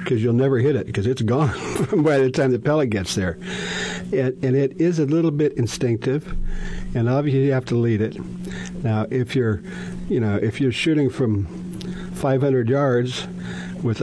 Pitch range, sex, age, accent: 115-165 Hz, male, 50-69, American